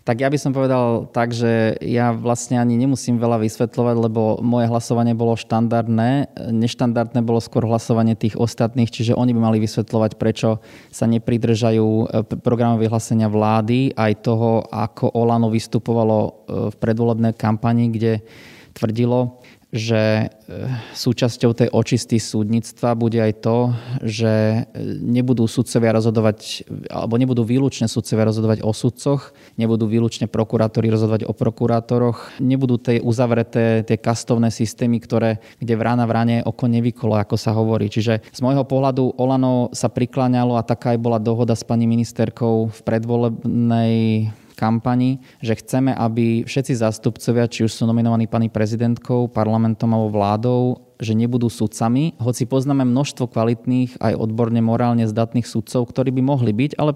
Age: 20-39